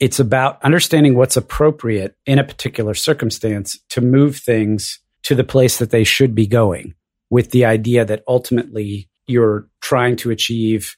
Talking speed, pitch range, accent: 160 wpm, 110-130 Hz, American